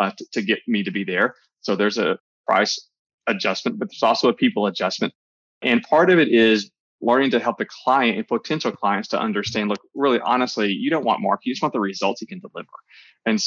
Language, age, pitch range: English, 20-39, 100-120 Hz